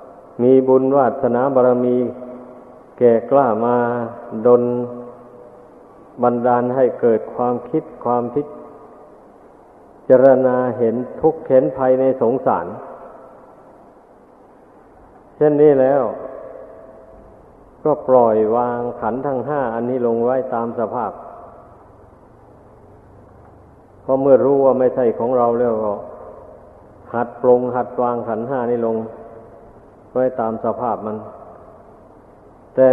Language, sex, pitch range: Thai, male, 120-135 Hz